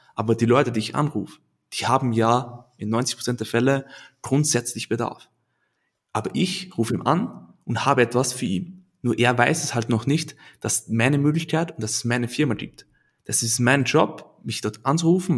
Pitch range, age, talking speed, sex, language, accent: 115-145 Hz, 20-39, 190 wpm, male, German, German